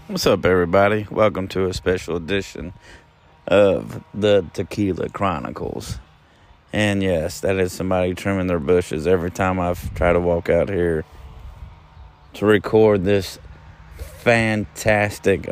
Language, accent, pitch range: English, American, 90-110 Hz